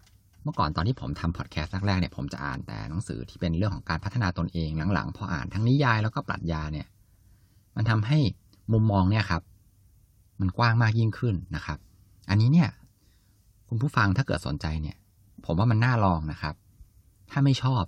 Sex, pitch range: male, 90-110 Hz